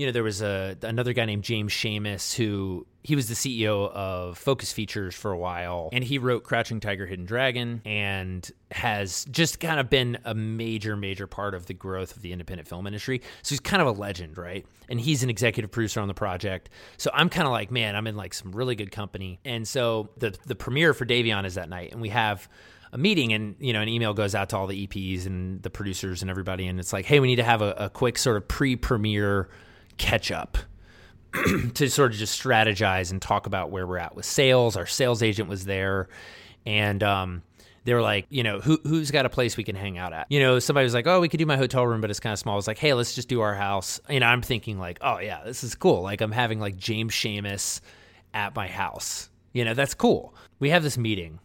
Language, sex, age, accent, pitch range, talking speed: English, male, 30-49, American, 95-125 Hz, 245 wpm